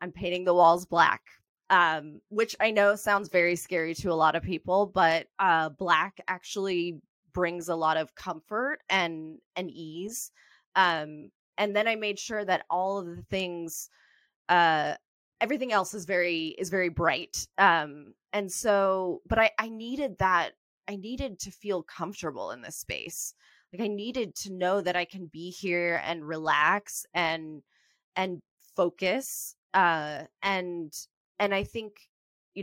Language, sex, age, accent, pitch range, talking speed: English, female, 20-39, American, 160-195 Hz, 155 wpm